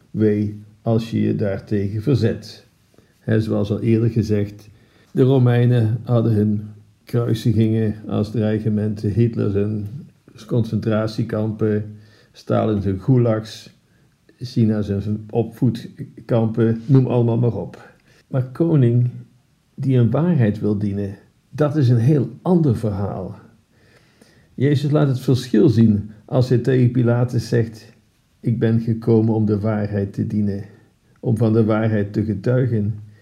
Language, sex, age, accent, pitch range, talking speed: Dutch, male, 50-69, Dutch, 105-125 Hz, 125 wpm